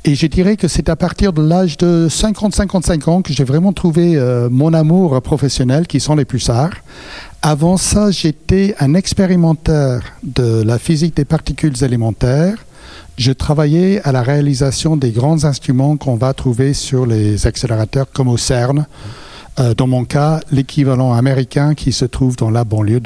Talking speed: 165 wpm